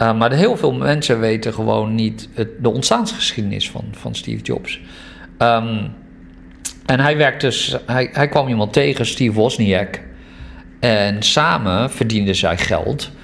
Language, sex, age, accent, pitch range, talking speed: Dutch, male, 50-69, Dutch, 95-135 Hz, 145 wpm